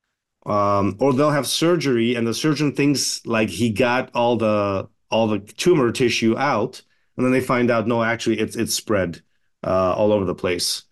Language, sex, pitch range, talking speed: English, male, 110-125 Hz, 185 wpm